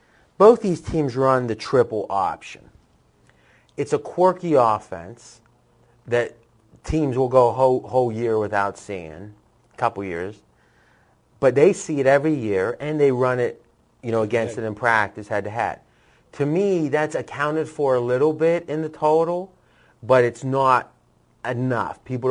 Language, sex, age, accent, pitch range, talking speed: English, male, 30-49, American, 110-130 Hz, 160 wpm